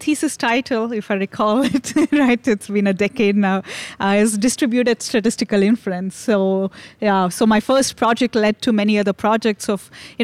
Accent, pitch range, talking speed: Indian, 205-235 Hz, 175 wpm